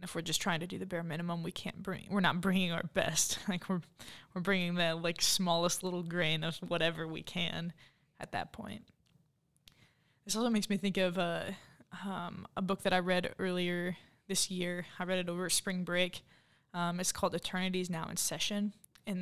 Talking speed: 200 wpm